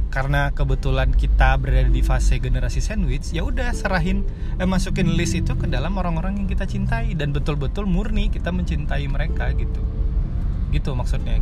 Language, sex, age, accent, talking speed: Indonesian, male, 20-39, native, 160 wpm